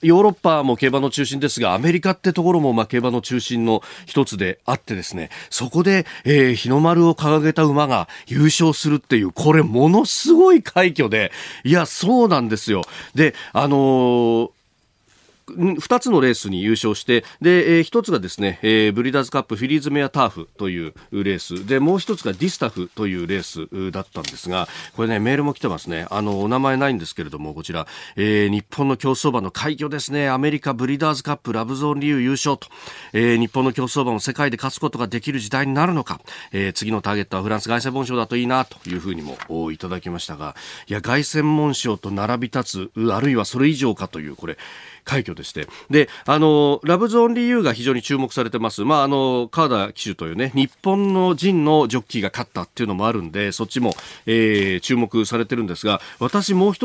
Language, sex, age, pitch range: Japanese, male, 40-59, 110-150 Hz